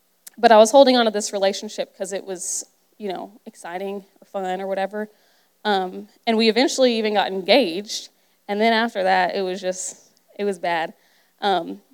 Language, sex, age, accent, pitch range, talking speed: English, female, 20-39, American, 195-245 Hz, 180 wpm